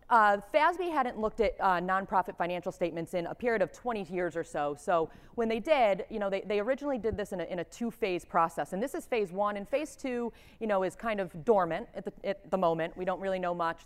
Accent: American